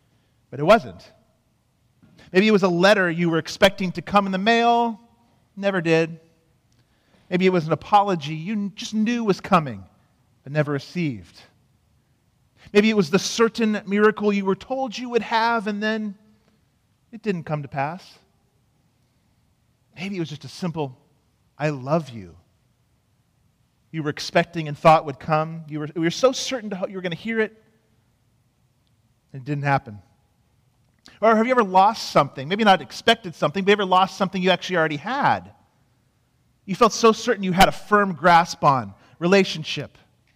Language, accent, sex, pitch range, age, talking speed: English, American, male, 130-195 Hz, 40-59, 165 wpm